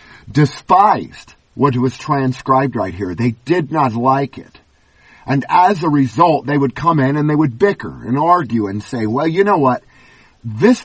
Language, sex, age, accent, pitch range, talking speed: English, male, 50-69, American, 130-175 Hz, 175 wpm